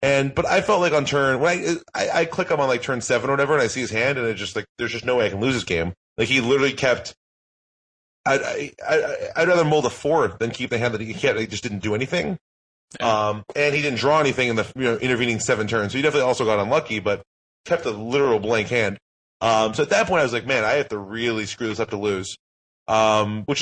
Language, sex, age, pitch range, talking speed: English, male, 30-49, 110-145 Hz, 270 wpm